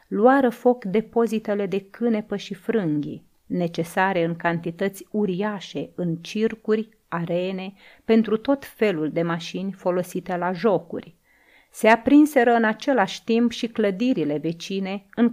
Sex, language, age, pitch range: female, Romanian, 30-49, 175-220 Hz